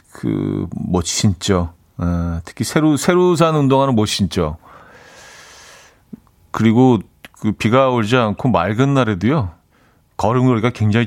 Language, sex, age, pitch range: Korean, male, 40-59, 100-145 Hz